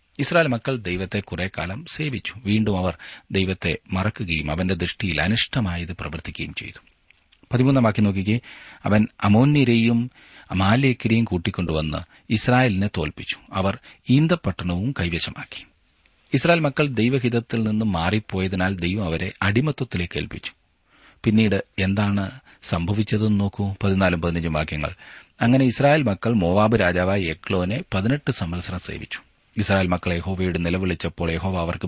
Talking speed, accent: 105 wpm, native